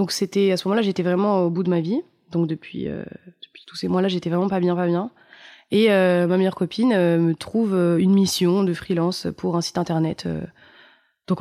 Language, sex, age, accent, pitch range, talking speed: French, female, 20-39, French, 175-215 Hz, 230 wpm